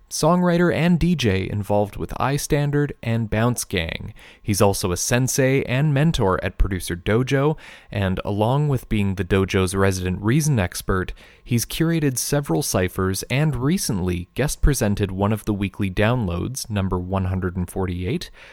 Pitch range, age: 95-130 Hz, 30-49